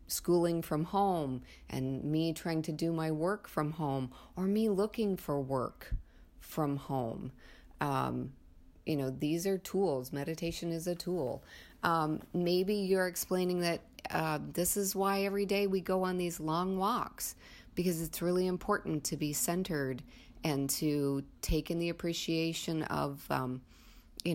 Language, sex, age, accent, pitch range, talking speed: English, female, 30-49, American, 140-185 Hz, 155 wpm